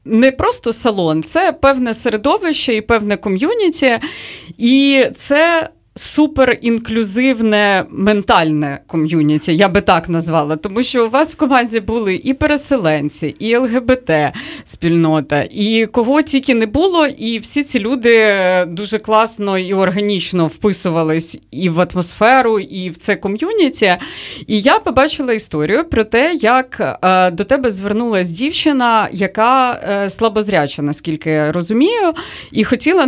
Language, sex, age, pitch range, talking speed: Ukrainian, female, 30-49, 180-245 Hz, 125 wpm